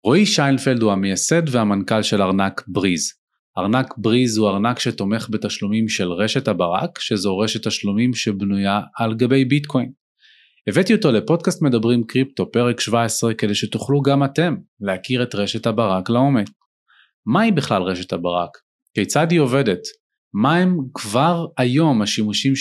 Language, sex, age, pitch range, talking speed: Hebrew, male, 30-49, 105-145 Hz, 140 wpm